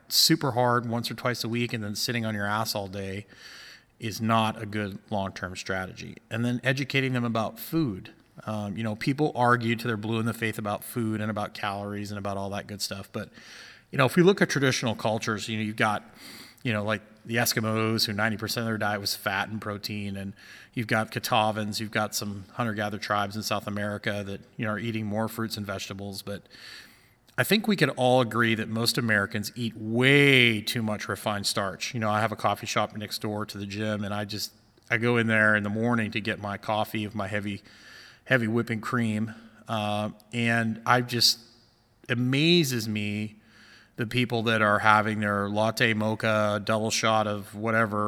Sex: male